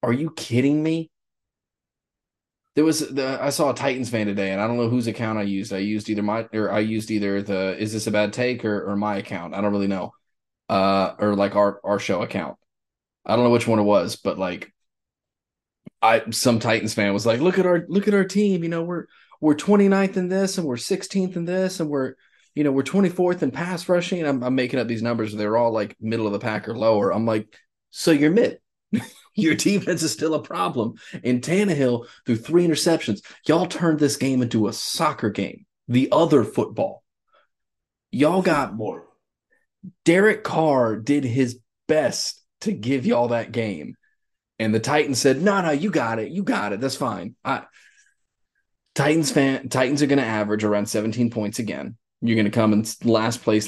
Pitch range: 110-160 Hz